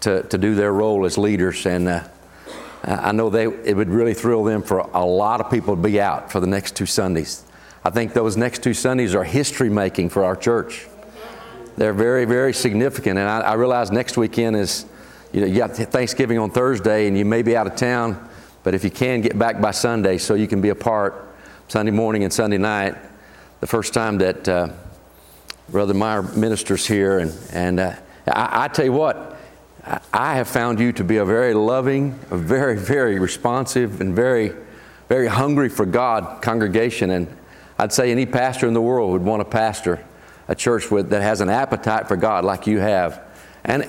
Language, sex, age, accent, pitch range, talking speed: English, male, 40-59, American, 100-120 Hz, 200 wpm